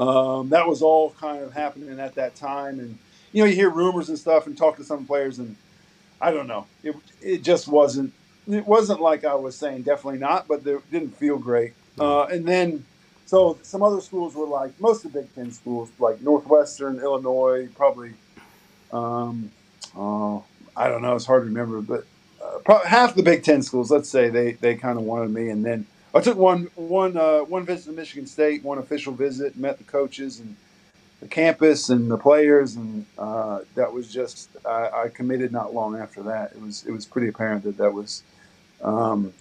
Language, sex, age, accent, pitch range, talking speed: English, male, 50-69, American, 120-160 Hz, 205 wpm